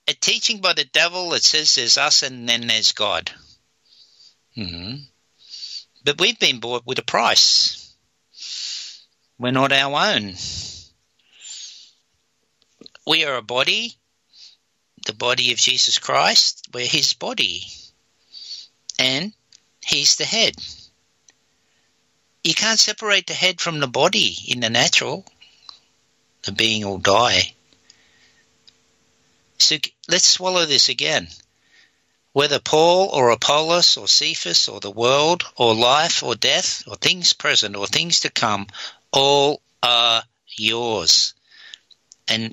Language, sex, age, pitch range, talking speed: English, male, 60-79, 115-165 Hz, 120 wpm